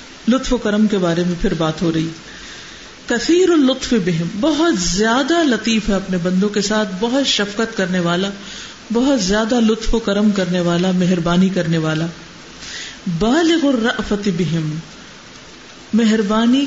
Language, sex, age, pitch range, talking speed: Urdu, female, 50-69, 185-250 Hz, 135 wpm